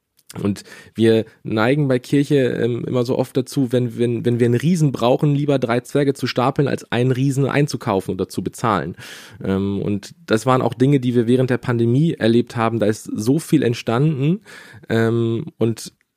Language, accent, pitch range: German, German, 115-145 Hz